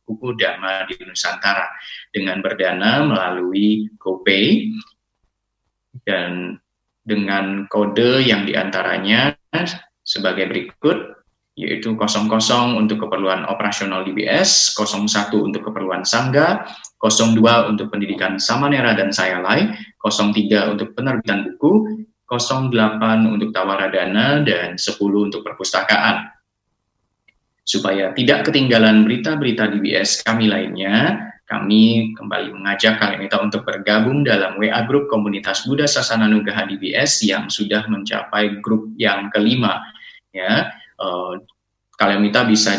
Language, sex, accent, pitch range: Indonesian, male, native, 100-115 Hz